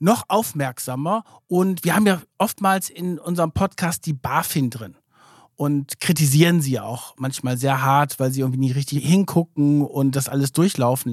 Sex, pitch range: male, 150-200 Hz